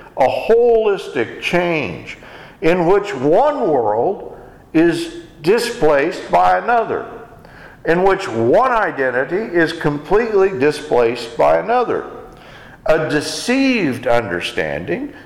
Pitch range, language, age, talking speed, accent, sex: 150-215 Hz, English, 60-79, 90 wpm, American, male